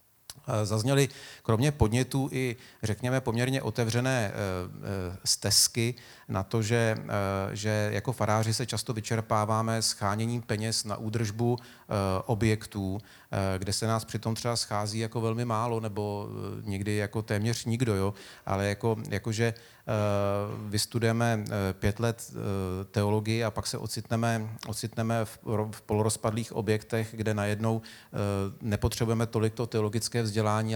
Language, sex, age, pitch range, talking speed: Czech, male, 40-59, 105-115 Hz, 110 wpm